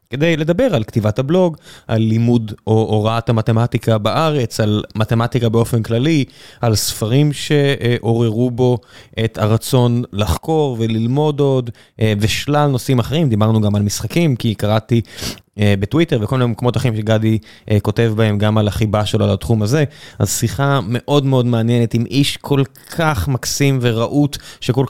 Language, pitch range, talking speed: Hebrew, 115-150 Hz, 140 wpm